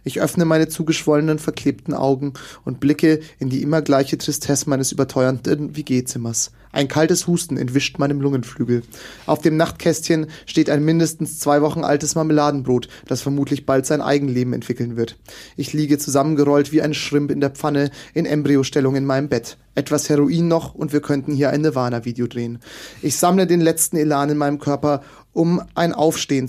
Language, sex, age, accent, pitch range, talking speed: German, male, 30-49, German, 135-160 Hz, 170 wpm